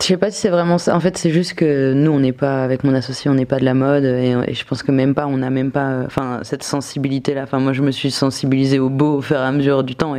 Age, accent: 20-39, French